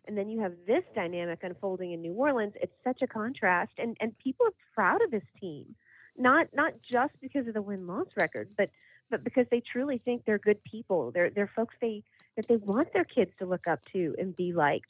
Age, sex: 30-49, female